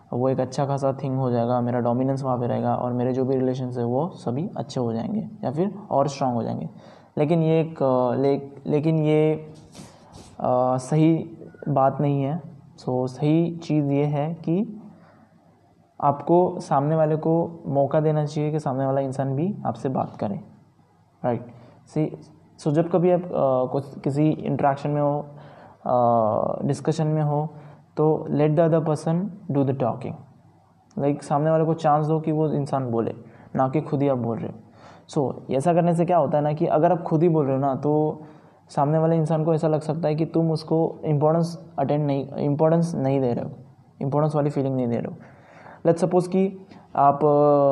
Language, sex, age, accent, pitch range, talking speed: Hindi, male, 20-39, native, 130-160 Hz, 185 wpm